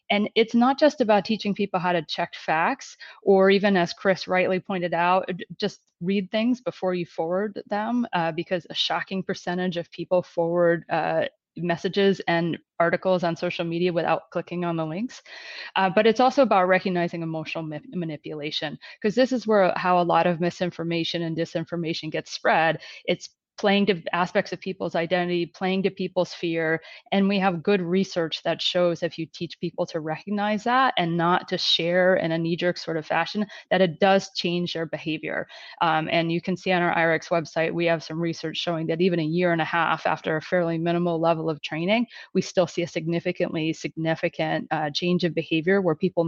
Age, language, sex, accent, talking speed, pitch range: 30-49, English, female, American, 190 wpm, 165-190 Hz